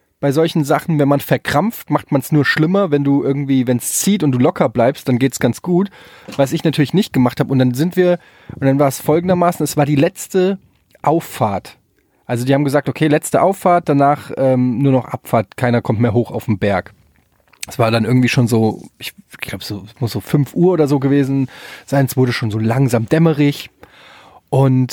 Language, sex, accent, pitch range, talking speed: German, male, German, 125-165 Hz, 215 wpm